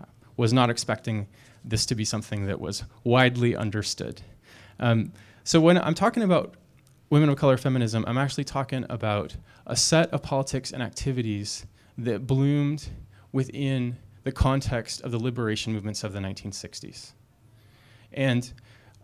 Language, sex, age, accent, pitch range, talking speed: English, male, 20-39, American, 110-130 Hz, 140 wpm